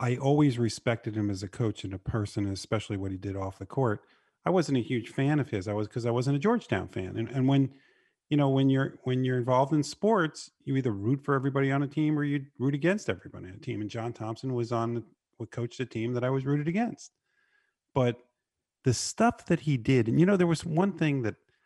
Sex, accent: male, American